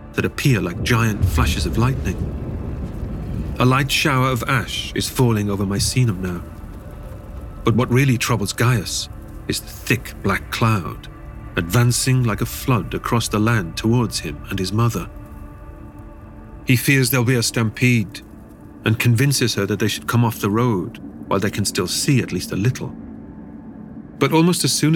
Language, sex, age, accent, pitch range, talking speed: English, male, 40-59, British, 95-125 Hz, 165 wpm